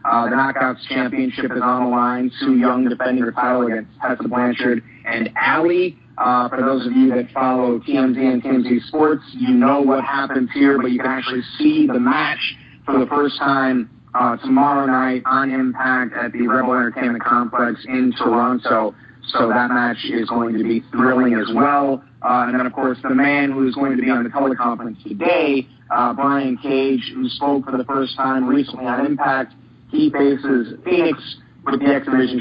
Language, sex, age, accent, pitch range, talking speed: English, male, 30-49, American, 120-135 Hz, 185 wpm